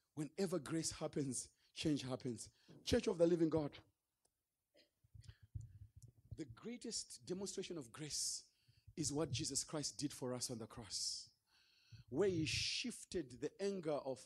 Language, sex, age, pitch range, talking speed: English, male, 40-59, 145-230 Hz, 130 wpm